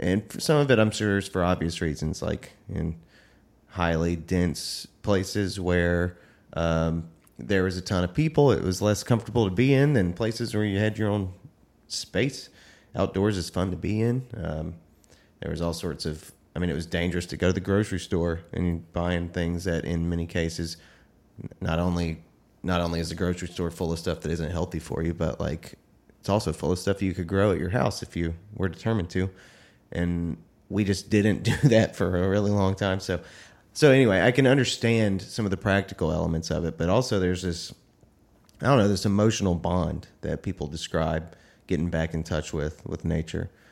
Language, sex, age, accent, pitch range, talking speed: English, male, 30-49, American, 85-100 Hz, 200 wpm